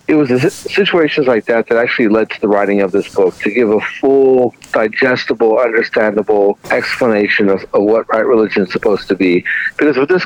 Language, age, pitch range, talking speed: English, 50-69, 110-150 Hz, 195 wpm